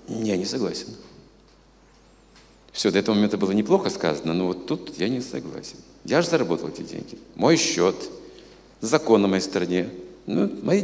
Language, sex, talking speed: Russian, male, 160 wpm